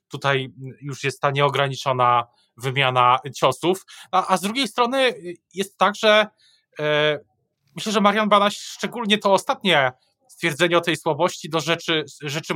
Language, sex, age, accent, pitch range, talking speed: Polish, male, 20-39, native, 135-170 Hz, 145 wpm